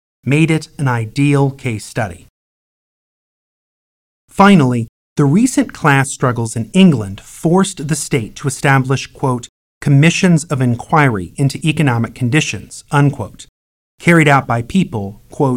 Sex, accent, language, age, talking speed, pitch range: male, American, English, 30-49, 110 wpm, 105-145 Hz